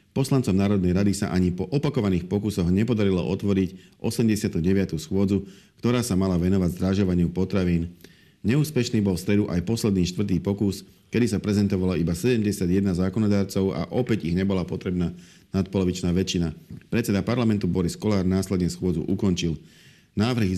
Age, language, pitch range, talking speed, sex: 50-69, Slovak, 90-100 Hz, 135 wpm, male